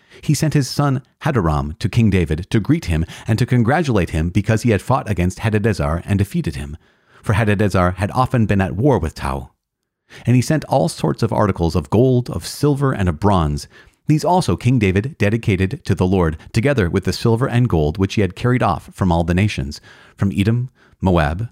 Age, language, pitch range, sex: 40-59, English, 85-115 Hz, male